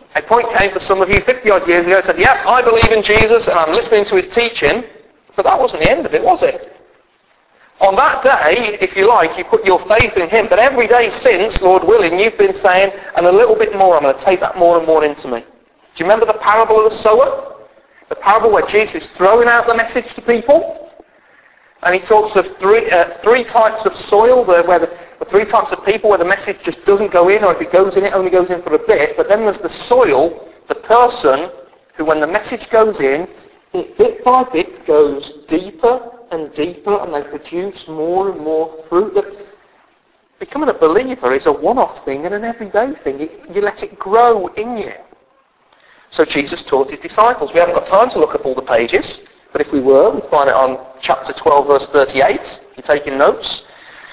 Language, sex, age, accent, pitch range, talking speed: English, male, 40-59, British, 175-250 Hz, 225 wpm